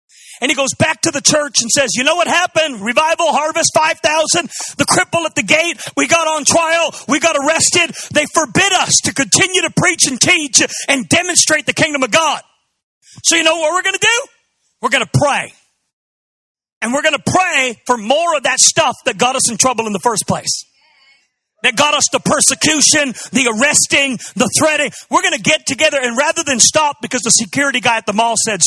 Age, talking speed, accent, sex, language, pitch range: 40-59, 210 wpm, American, male, English, 225-315 Hz